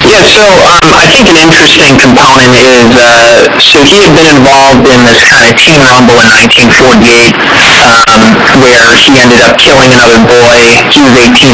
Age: 30-49